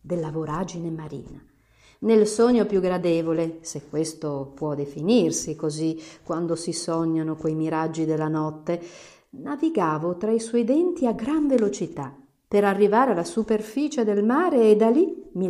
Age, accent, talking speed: 50-69, native, 145 wpm